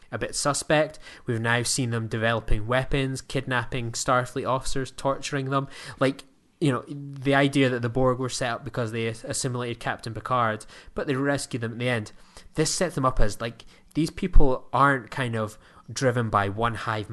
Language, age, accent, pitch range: English, 20-39, British, 110-135 Hz